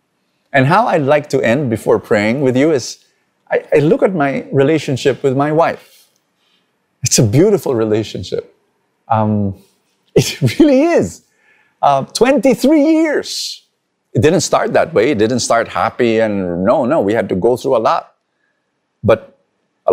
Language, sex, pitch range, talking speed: English, male, 100-140 Hz, 155 wpm